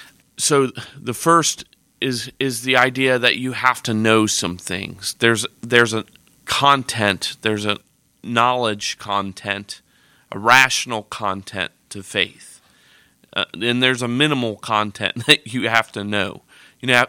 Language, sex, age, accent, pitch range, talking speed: English, male, 40-59, American, 105-130 Hz, 135 wpm